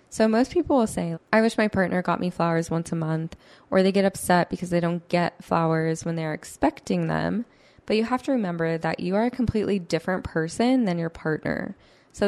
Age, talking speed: 10-29, 215 wpm